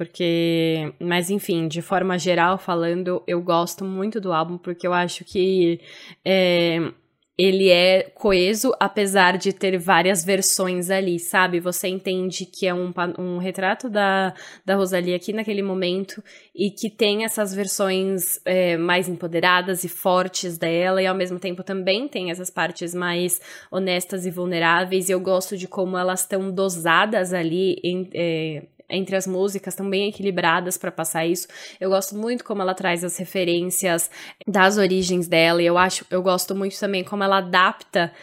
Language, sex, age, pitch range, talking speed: Portuguese, female, 10-29, 180-200 Hz, 155 wpm